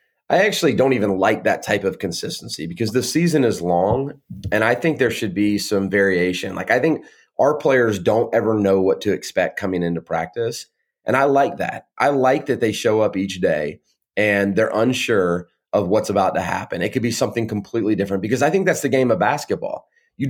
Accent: American